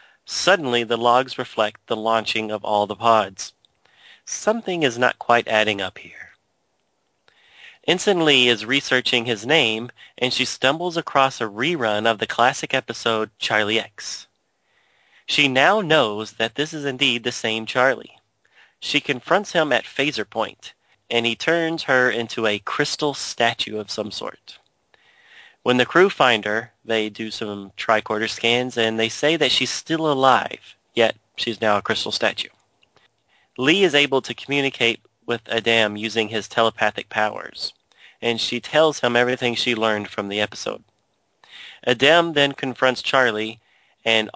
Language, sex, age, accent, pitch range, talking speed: English, male, 30-49, American, 110-135 Hz, 150 wpm